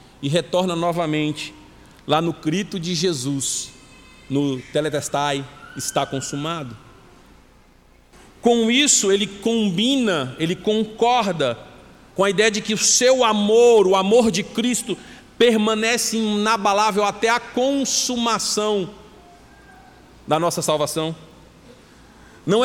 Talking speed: 105 wpm